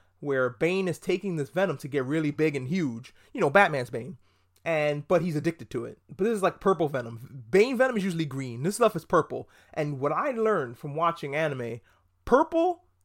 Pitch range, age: 145-195 Hz, 30-49